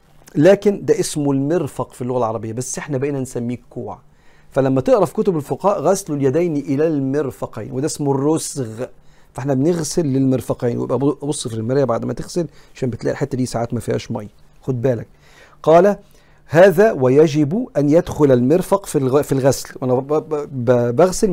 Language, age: Arabic, 50-69